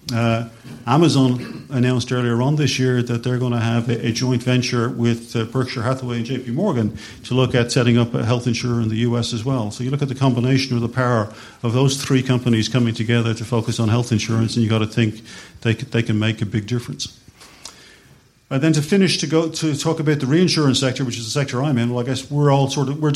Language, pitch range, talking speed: English, 115-130 Hz, 245 wpm